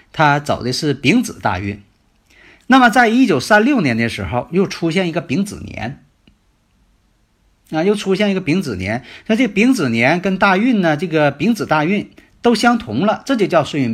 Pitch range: 115-185 Hz